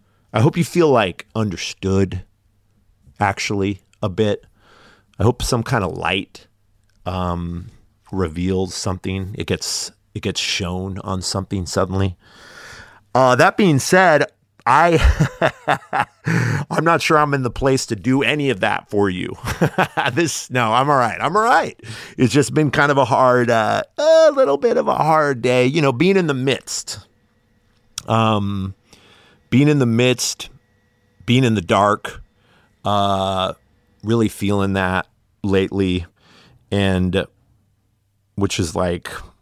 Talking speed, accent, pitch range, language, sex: 140 wpm, American, 95-120 Hz, English, male